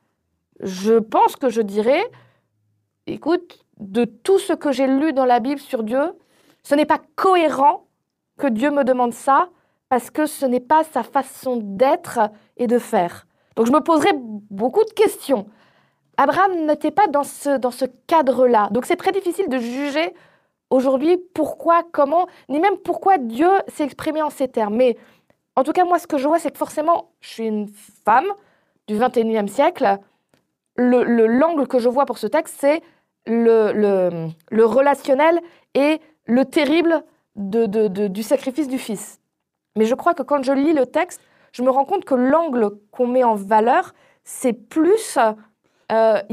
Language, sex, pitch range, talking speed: French, female, 235-315 Hz, 175 wpm